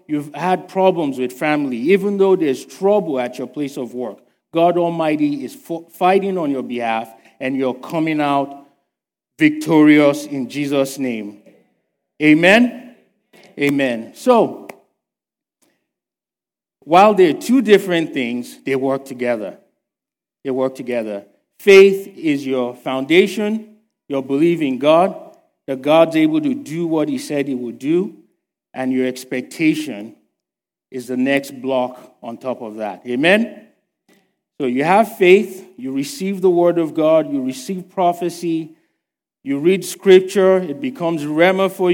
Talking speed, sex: 135 wpm, male